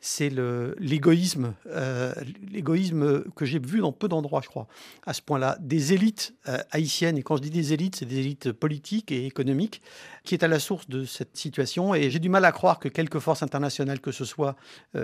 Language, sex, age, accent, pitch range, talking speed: French, male, 50-69, French, 140-170 Hz, 215 wpm